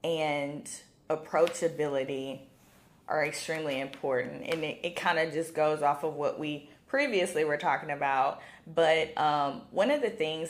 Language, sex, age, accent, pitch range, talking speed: English, female, 20-39, American, 145-185 Hz, 145 wpm